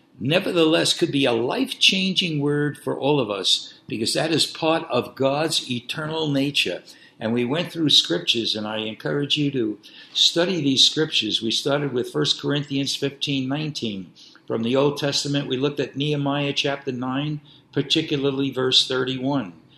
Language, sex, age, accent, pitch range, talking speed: English, male, 60-79, American, 130-155 Hz, 155 wpm